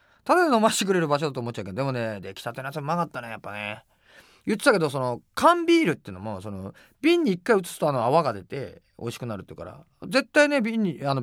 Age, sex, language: 40-59, male, Japanese